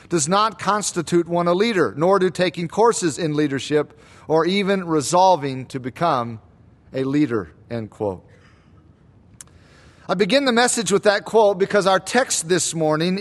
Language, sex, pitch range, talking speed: English, male, 145-200 Hz, 150 wpm